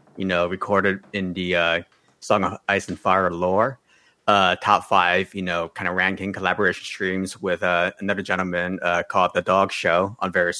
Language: English